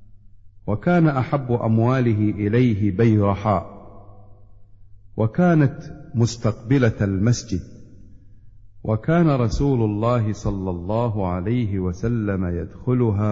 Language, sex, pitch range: Arabic, male, 105-125 Hz